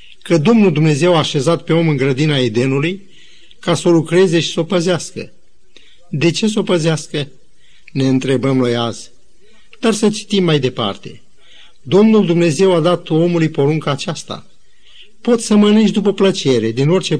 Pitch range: 130-175 Hz